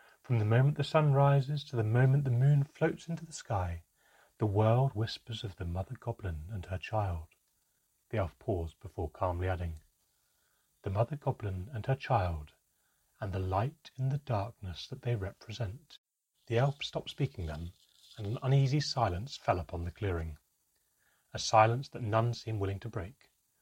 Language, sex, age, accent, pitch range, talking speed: English, male, 30-49, British, 95-135 Hz, 170 wpm